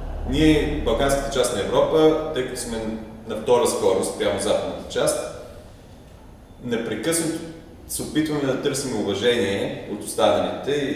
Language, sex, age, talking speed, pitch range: Bulgarian, male, 30-49, 135 wpm, 110-140 Hz